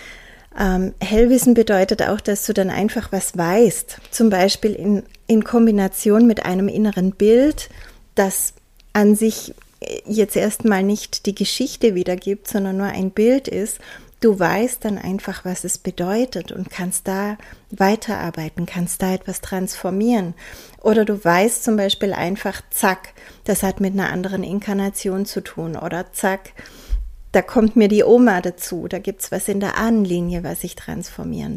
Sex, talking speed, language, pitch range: female, 155 wpm, German, 185-220 Hz